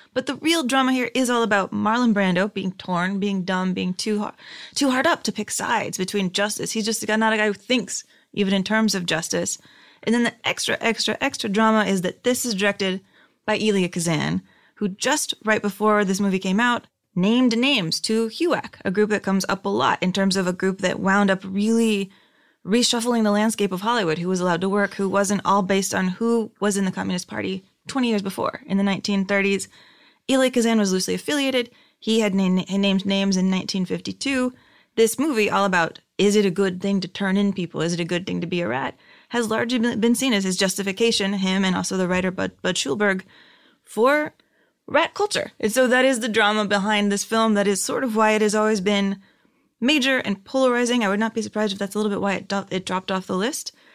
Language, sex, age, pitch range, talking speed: English, female, 20-39, 195-230 Hz, 215 wpm